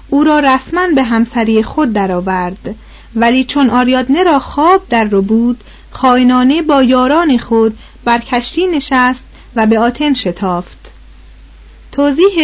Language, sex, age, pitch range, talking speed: Persian, female, 40-59, 225-305 Hz, 130 wpm